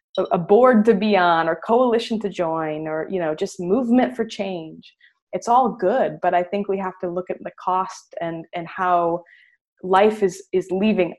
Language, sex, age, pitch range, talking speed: English, female, 20-39, 170-205 Hz, 195 wpm